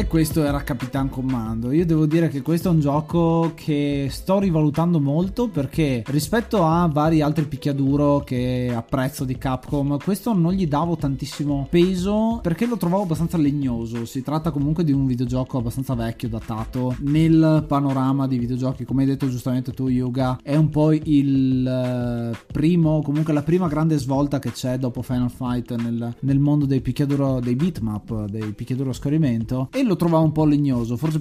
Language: Italian